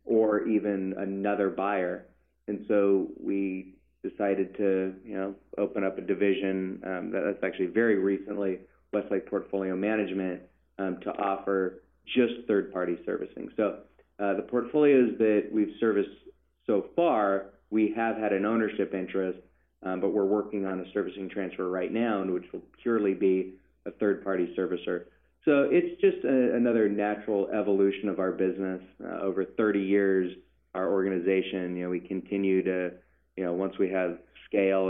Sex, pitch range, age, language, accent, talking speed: male, 90-100 Hz, 30-49, English, American, 150 wpm